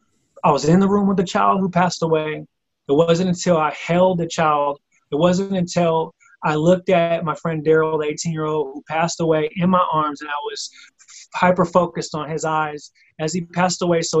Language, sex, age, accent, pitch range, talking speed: English, male, 20-39, American, 155-185 Hz, 210 wpm